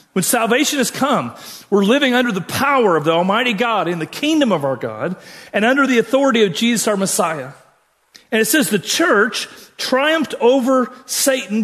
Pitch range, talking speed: 180-250 Hz, 180 wpm